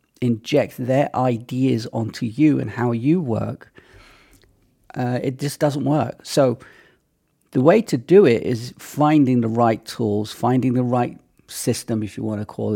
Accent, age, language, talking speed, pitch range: British, 40-59, English, 160 wpm, 110-130 Hz